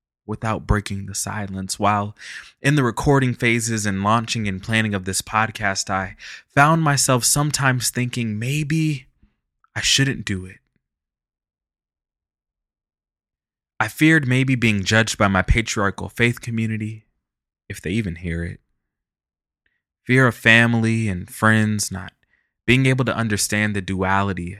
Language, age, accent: English, 20-39, American